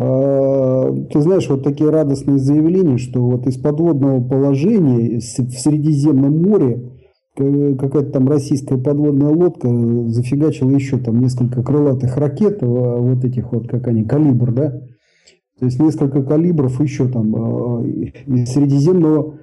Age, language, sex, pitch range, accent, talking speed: 40-59, Russian, male, 125-150 Hz, native, 125 wpm